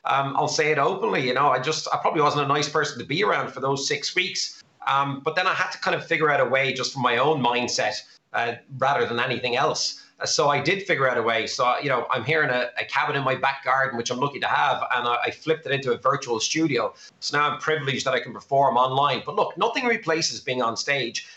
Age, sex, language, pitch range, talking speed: 30-49, male, English, 130-165 Hz, 265 wpm